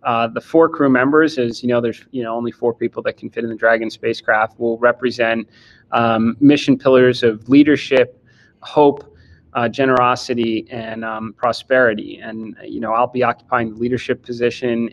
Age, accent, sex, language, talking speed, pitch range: 30-49, American, male, English, 175 wpm, 115-125 Hz